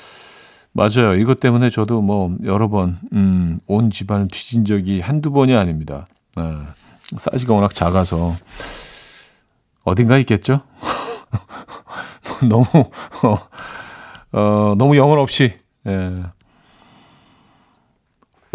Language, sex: Korean, male